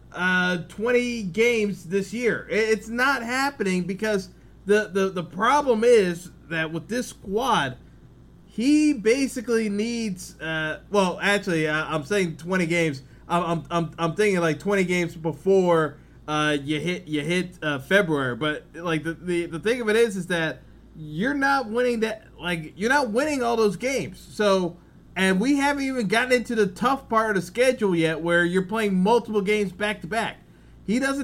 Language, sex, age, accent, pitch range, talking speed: English, male, 20-39, American, 165-220 Hz, 170 wpm